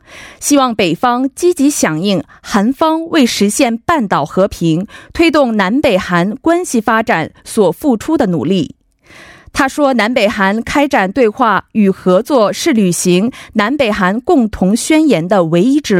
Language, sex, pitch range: Korean, female, 195-275 Hz